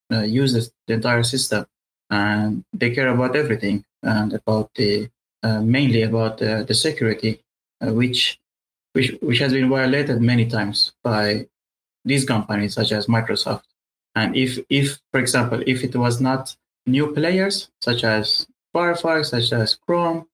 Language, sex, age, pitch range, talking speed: Persian, male, 20-39, 115-140 Hz, 150 wpm